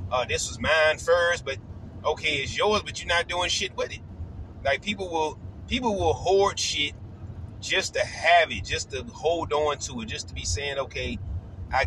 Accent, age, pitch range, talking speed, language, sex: American, 30-49, 95-130 Hz, 195 wpm, English, male